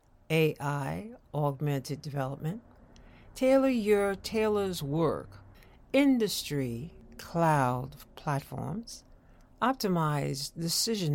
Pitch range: 135-185 Hz